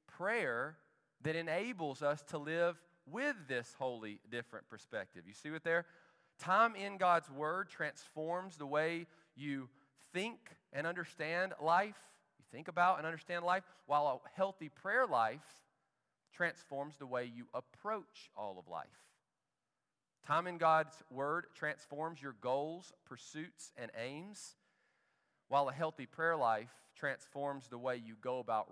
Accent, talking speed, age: American, 140 wpm, 40-59